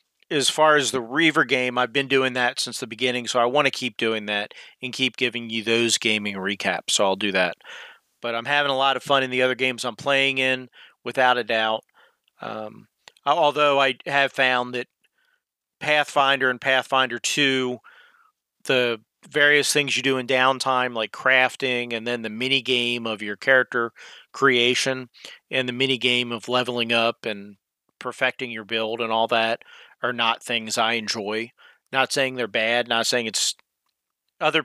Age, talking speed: 40-59, 180 wpm